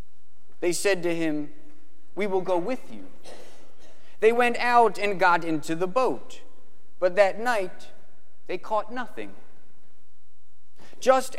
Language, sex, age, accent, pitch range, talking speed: English, male, 30-49, American, 155-220 Hz, 125 wpm